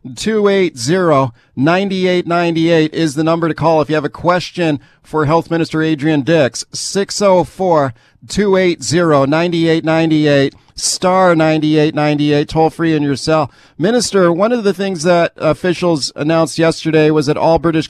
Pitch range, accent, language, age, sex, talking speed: 150-175 Hz, American, English, 50-69, male, 125 wpm